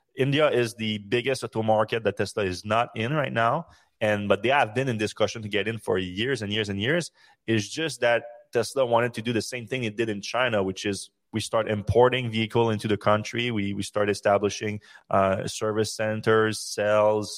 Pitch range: 100-115 Hz